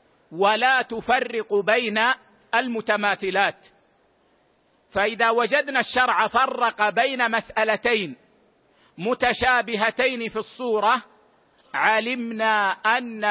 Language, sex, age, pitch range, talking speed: Arabic, male, 50-69, 215-245 Hz, 70 wpm